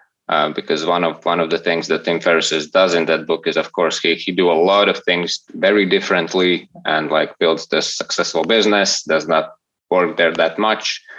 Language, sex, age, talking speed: English, male, 20-39, 210 wpm